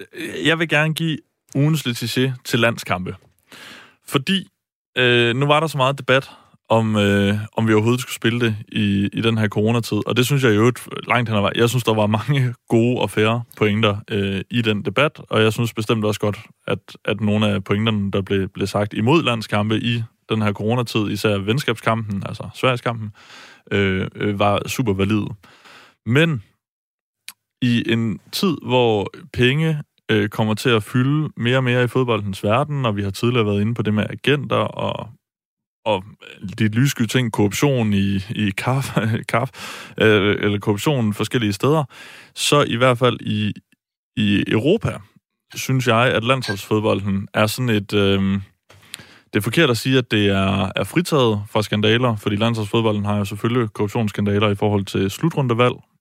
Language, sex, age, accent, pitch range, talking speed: Danish, male, 20-39, native, 105-125 Hz, 170 wpm